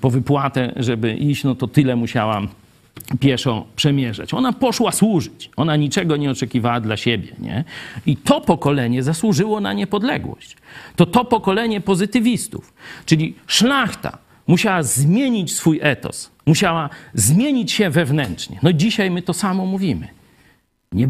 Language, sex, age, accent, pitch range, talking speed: Polish, male, 50-69, native, 135-215 Hz, 135 wpm